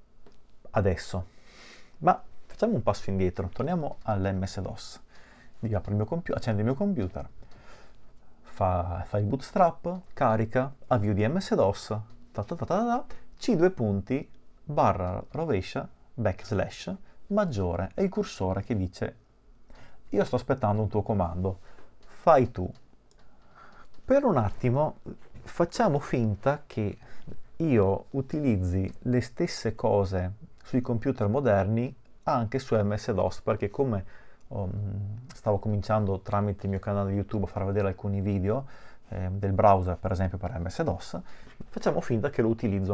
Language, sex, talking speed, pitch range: Italian, male, 125 wpm, 95-130 Hz